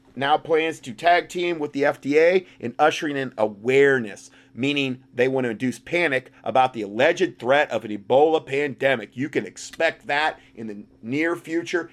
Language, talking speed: English, 170 wpm